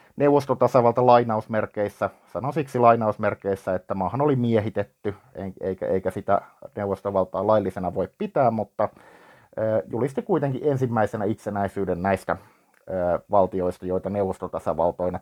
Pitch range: 95-120 Hz